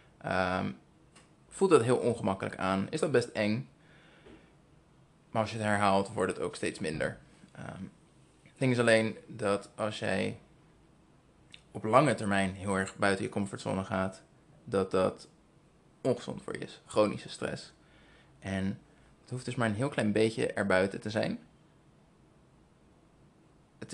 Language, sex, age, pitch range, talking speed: Dutch, male, 20-39, 105-135 Hz, 145 wpm